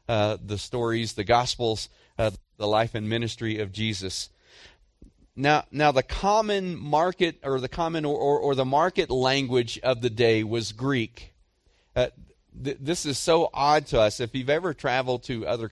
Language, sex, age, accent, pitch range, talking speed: English, male, 40-59, American, 110-145 Hz, 170 wpm